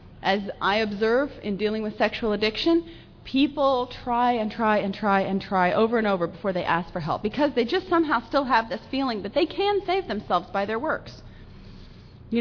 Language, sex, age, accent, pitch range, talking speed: English, female, 30-49, American, 195-255 Hz, 200 wpm